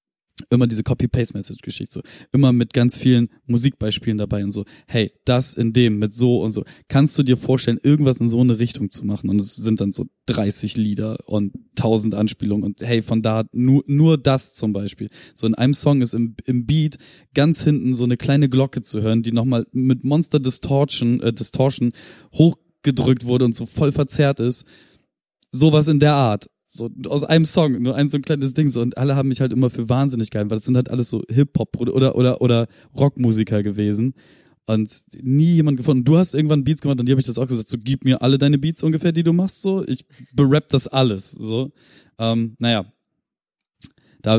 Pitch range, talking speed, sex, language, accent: 115-145 Hz, 205 wpm, male, German, German